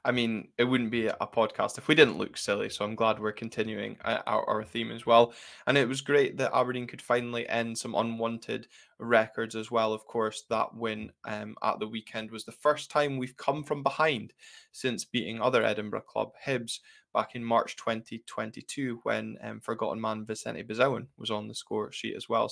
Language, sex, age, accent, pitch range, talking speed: English, male, 10-29, British, 110-125 Hz, 200 wpm